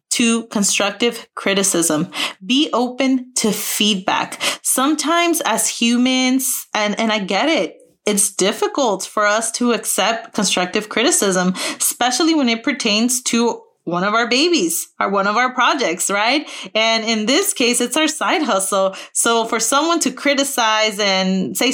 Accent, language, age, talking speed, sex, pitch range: American, English, 30-49, 145 wpm, female, 205-260 Hz